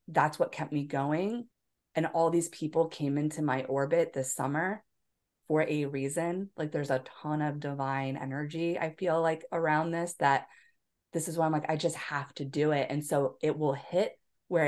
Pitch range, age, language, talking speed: 140-165 Hz, 20-39, English, 195 wpm